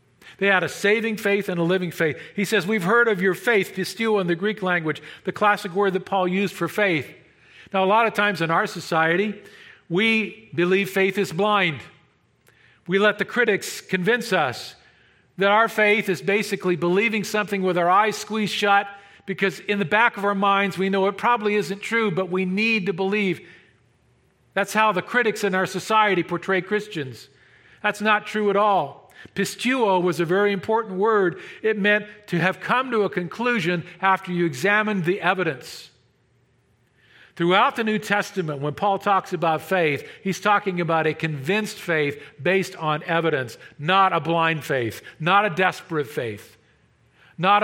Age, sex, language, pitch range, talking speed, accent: 50-69, male, English, 160-205 Hz, 175 wpm, American